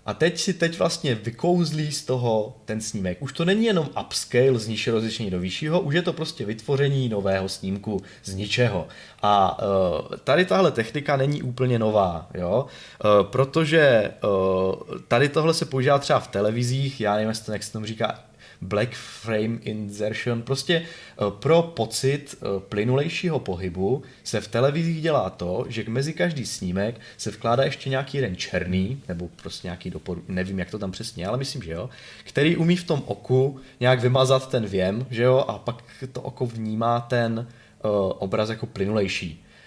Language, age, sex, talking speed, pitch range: Czech, 20-39, male, 165 wpm, 105-135 Hz